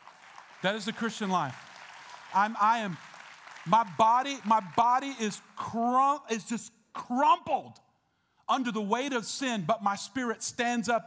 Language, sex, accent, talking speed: English, male, American, 145 wpm